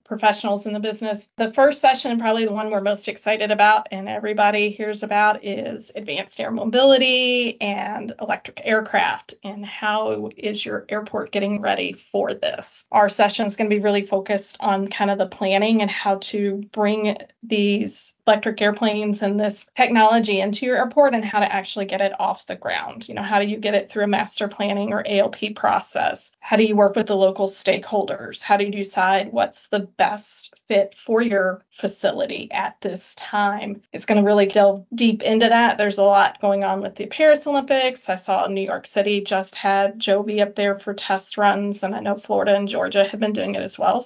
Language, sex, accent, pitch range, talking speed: English, female, American, 200-215 Hz, 200 wpm